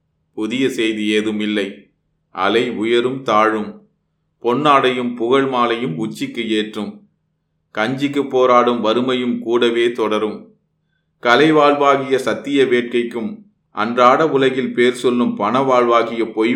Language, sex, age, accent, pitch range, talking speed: Tamil, male, 30-49, native, 105-135 Hz, 95 wpm